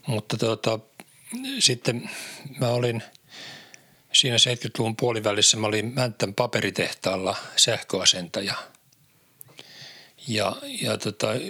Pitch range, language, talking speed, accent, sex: 105-130 Hz, Finnish, 85 wpm, native, male